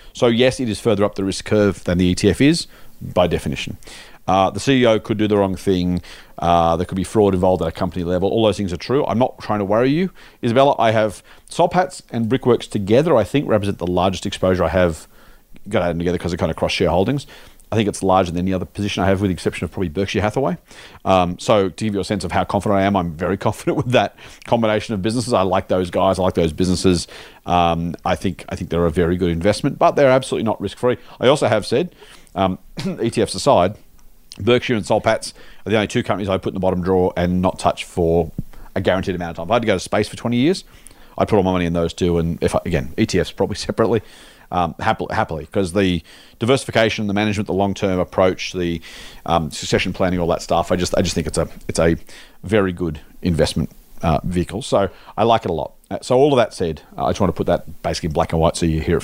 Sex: male